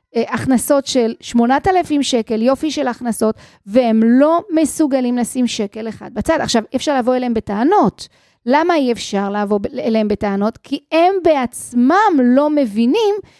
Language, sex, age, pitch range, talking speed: Hebrew, female, 30-49, 225-285 Hz, 135 wpm